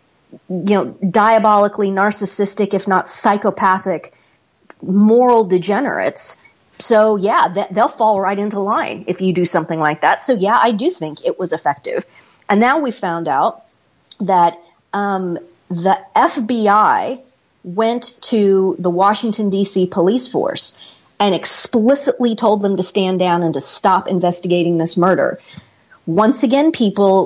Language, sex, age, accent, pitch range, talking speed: English, female, 40-59, American, 180-215 Hz, 135 wpm